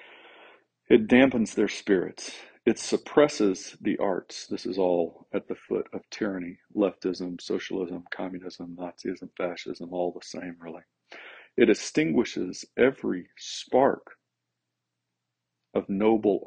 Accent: American